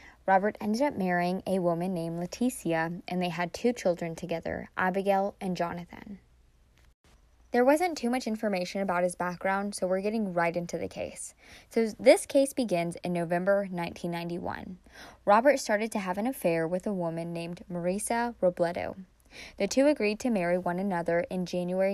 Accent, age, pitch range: American, 20-39, 175-220 Hz